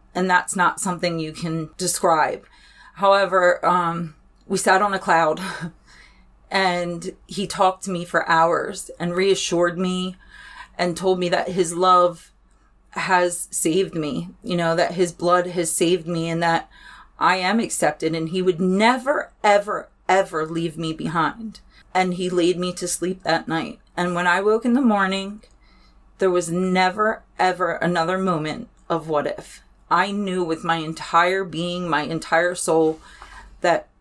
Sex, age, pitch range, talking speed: female, 30-49, 170-190 Hz, 155 wpm